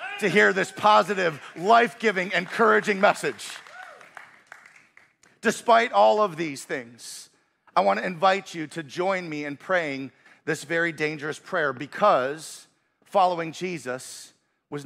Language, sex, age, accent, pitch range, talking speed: English, male, 40-59, American, 175-235 Hz, 120 wpm